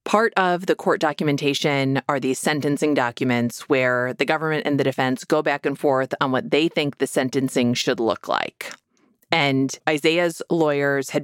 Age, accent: 30-49, American